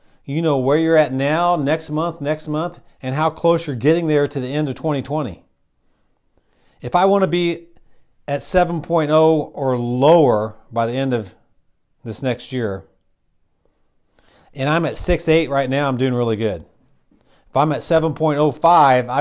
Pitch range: 115-160 Hz